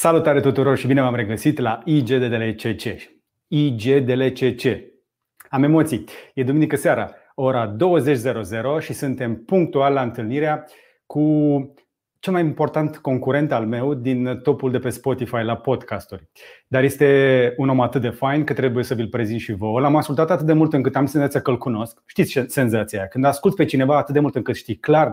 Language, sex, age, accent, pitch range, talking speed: Romanian, male, 30-49, native, 125-155 Hz, 175 wpm